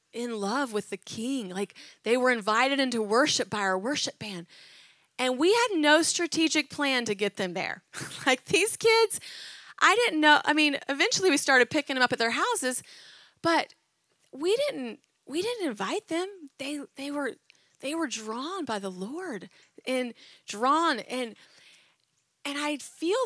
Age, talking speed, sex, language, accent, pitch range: 30-49, 165 wpm, female, English, American, 205-290 Hz